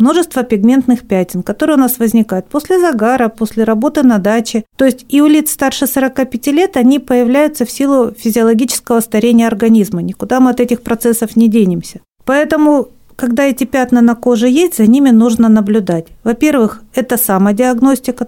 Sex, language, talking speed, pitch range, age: female, Russian, 160 wpm, 225-290 Hz, 50-69